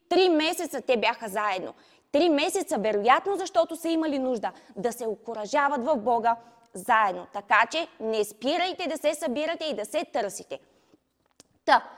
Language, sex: Bulgarian, female